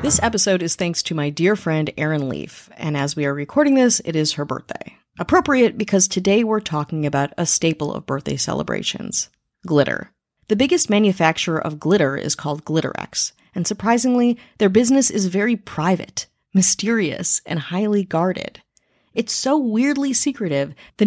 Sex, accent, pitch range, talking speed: female, American, 160-220 Hz, 160 wpm